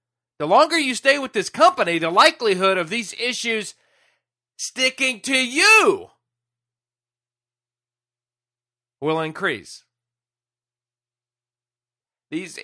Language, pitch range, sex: English, 120-180 Hz, male